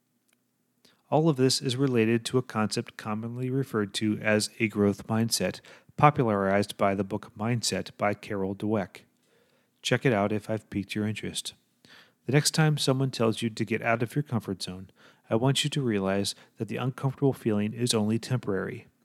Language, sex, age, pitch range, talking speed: English, male, 30-49, 105-125 Hz, 175 wpm